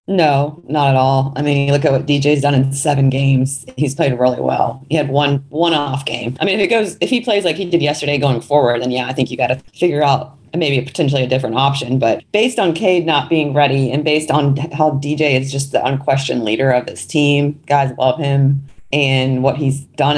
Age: 30-49